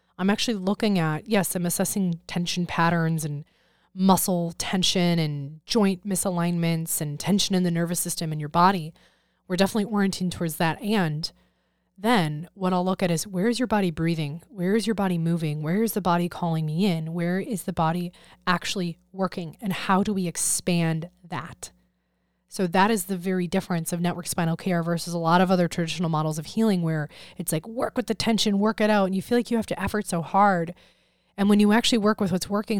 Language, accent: English, American